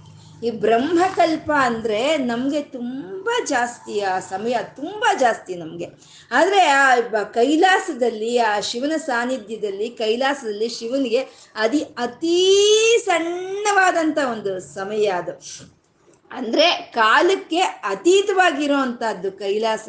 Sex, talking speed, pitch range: female, 85 wpm, 220-335 Hz